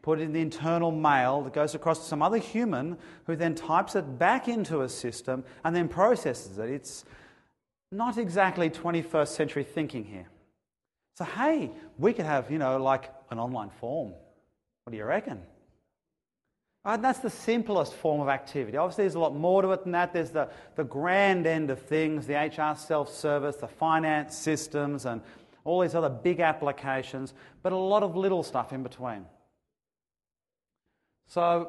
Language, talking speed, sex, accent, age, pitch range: English, 170 wpm, male, Australian, 30-49, 140-185 Hz